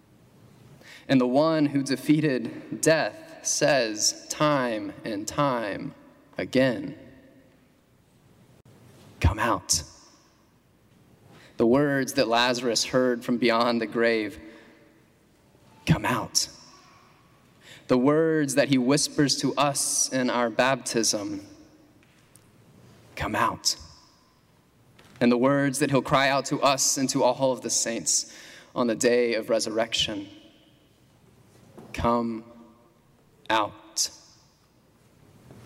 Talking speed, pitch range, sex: 100 wpm, 120-145 Hz, male